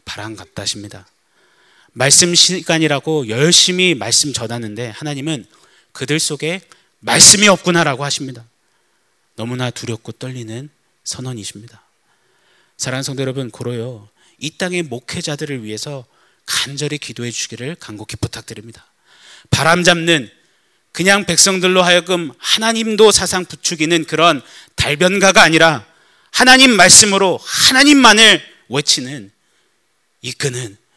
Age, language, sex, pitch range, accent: 30-49, Korean, male, 115-160 Hz, native